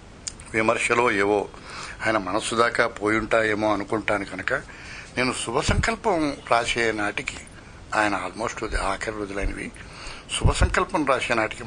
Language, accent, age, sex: Telugu, native, 60-79, male